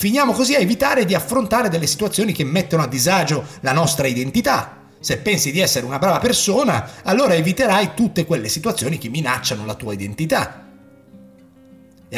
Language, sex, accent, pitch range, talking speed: Italian, male, native, 130-215 Hz, 165 wpm